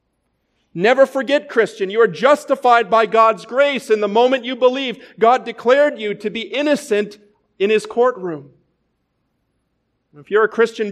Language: English